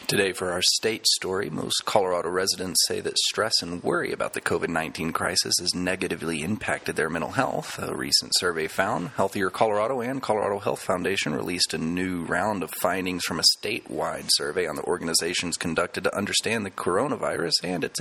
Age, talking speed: 30-49, 175 wpm